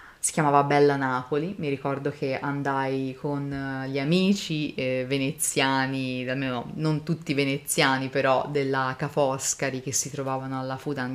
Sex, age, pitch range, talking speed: female, 30-49, 135-155 Hz, 135 wpm